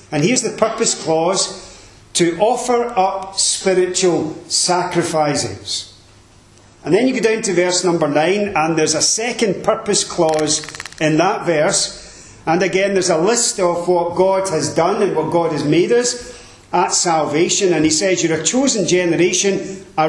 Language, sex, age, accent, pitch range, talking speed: English, male, 40-59, British, 155-200 Hz, 160 wpm